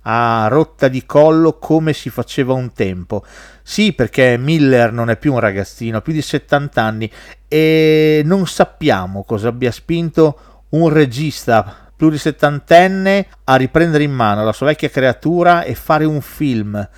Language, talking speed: Italian, 160 wpm